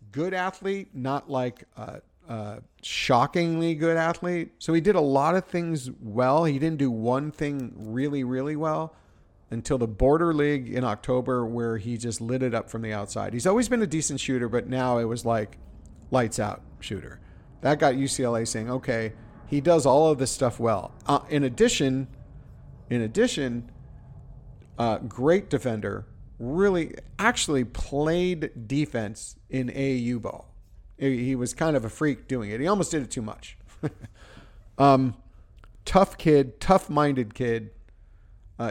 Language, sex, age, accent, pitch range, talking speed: English, male, 40-59, American, 115-145 Hz, 160 wpm